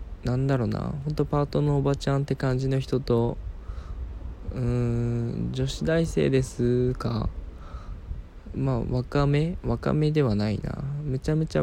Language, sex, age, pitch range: Japanese, male, 20-39, 90-125 Hz